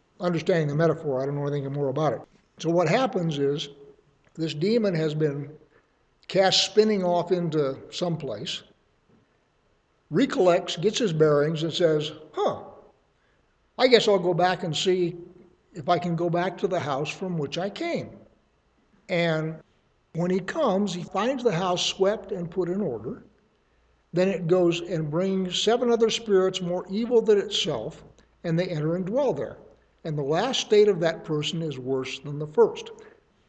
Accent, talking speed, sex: American, 165 wpm, male